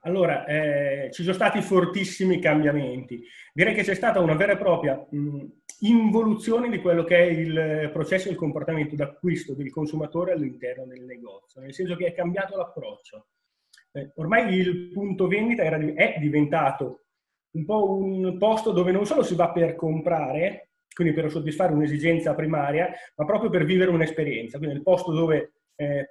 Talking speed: 170 wpm